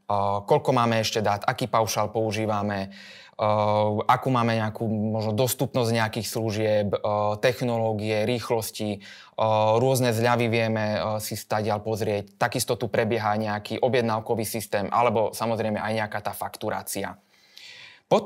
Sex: male